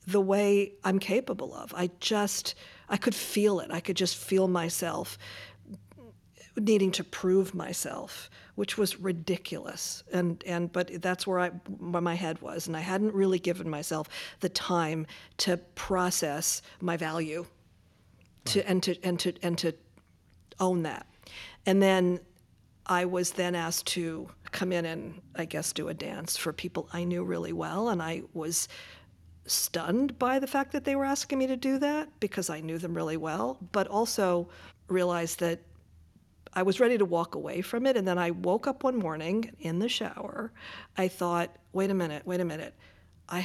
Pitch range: 165-195 Hz